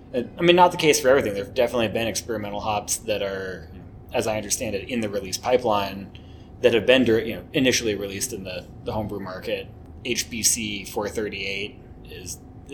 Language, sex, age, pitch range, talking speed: English, male, 20-39, 95-115 Hz, 175 wpm